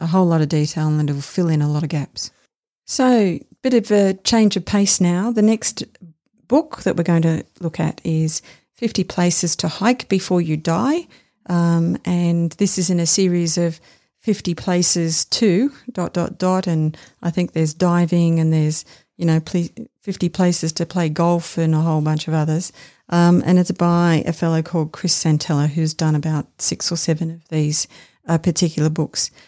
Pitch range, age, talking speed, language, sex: 165-190 Hz, 50-69, 190 wpm, English, female